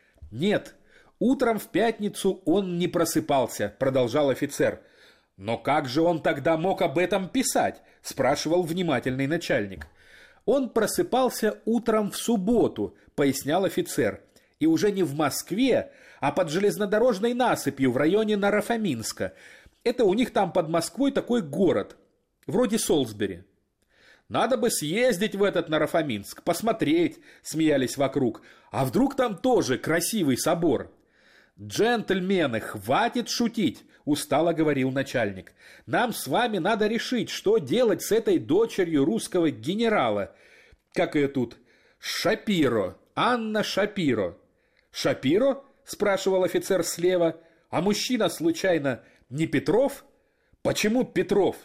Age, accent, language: 30-49, native, Russian